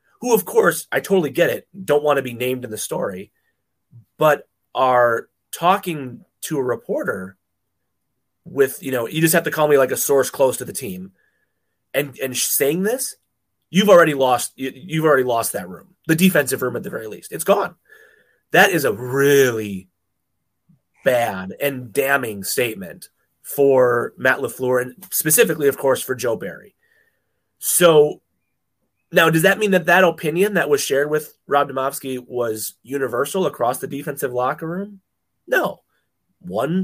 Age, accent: 30-49, American